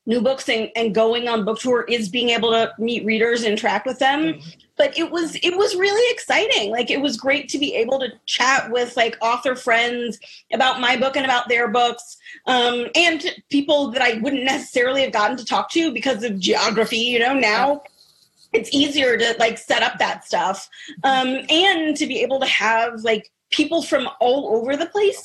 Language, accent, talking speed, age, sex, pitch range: English, American, 200 wpm, 30-49, female, 220-275 Hz